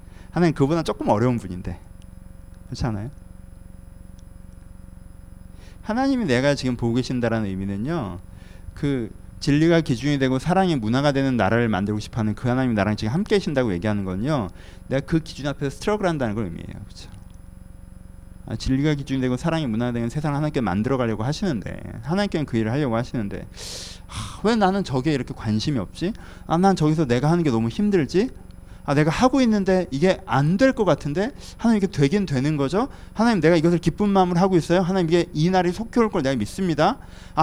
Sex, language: male, Korean